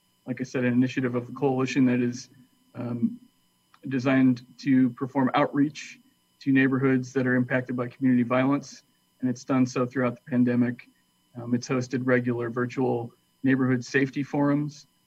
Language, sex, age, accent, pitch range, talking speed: English, male, 40-59, American, 125-140 Hz, 150 wpm